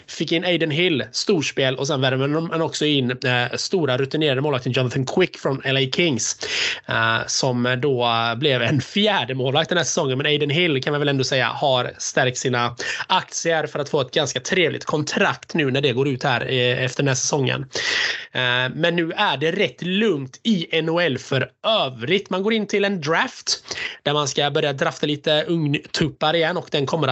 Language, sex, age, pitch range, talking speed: Swedish, male, 20-39, 130-160 Hz, 190 wpm